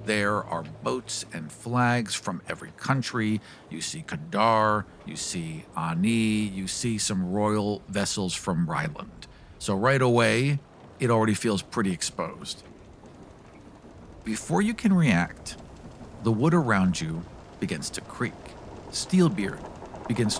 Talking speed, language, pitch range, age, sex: 125 wpm, English, 100-130 Hz, 50-69, male